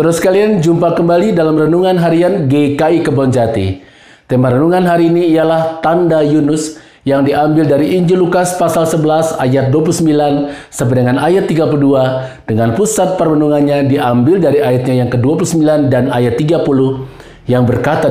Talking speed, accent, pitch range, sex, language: 140 wpm, native, 125-165 Hz, male, Indonesian